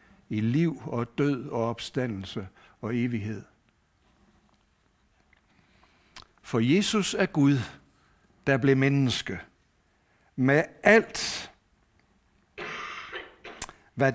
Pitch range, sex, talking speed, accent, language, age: 115-170 Hz, male, 75 wpm, native, Danish, 60-79